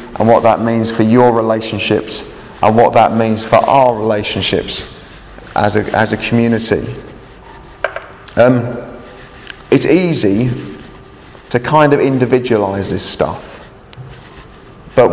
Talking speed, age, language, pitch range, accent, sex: 115 wpm, 30-49, English, 110-130 Hz, British, male